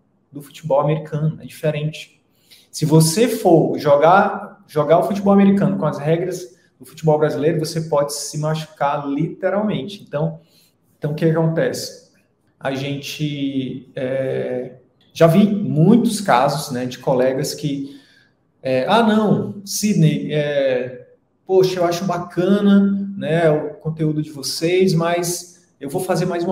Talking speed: 130 wpm